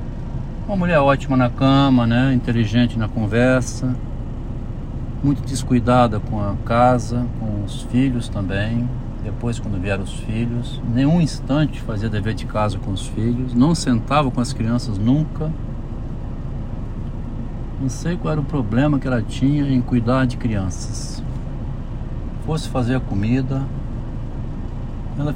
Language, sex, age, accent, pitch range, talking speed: Portuguese, male, 60-79, Brazilian, 115-130 Hz, 135 wpm